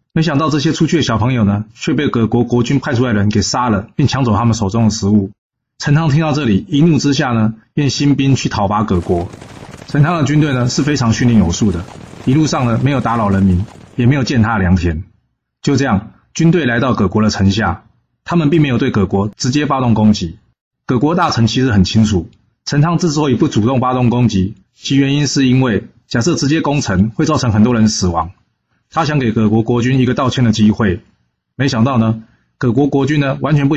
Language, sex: Chinese, male